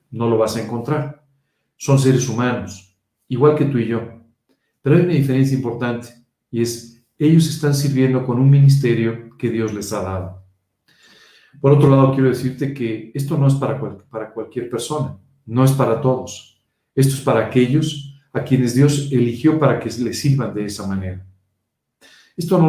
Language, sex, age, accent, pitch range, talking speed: Spanish, male, 40-59, Mexican, 115-140 Hz, 175 wpm